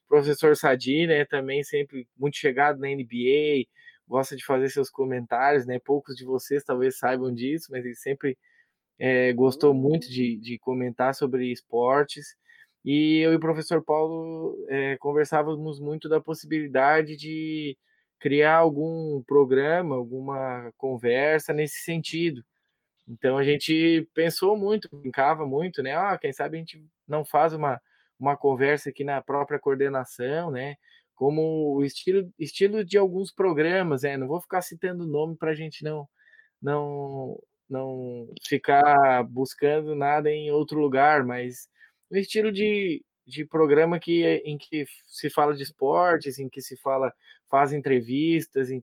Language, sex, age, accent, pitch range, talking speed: Portuguese, male, 20-39, Brazilian, 135-160 Hz, 145 wpm